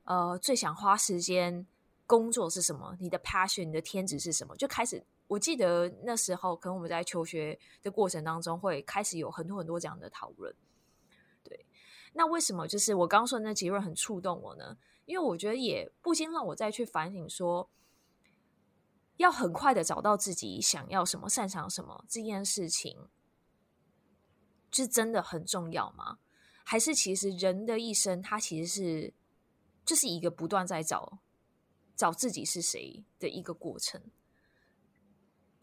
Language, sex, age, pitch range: Chinese, female, 20-39, 175-225 Hz